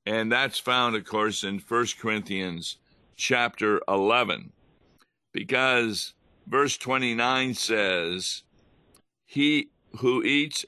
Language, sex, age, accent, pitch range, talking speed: English, male, 50-69, American, 105-130 Hz, 95 wpm